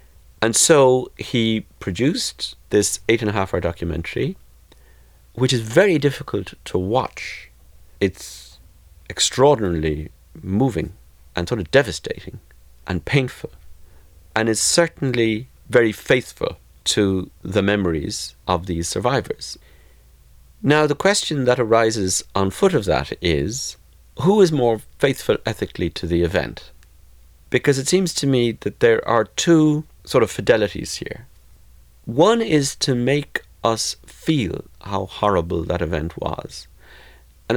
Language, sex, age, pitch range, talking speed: English, male, 50-69, 85-125 Hz, 130 wpm